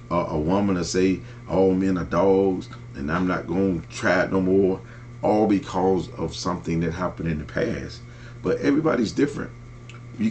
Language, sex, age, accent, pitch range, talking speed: English, male, 40-59, American, 95-120 Hz, 175 wpm